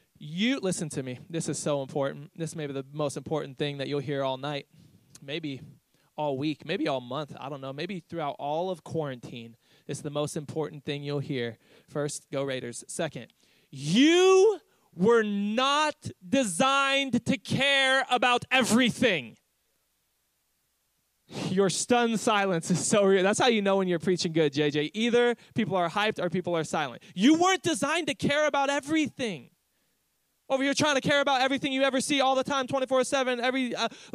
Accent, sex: American, male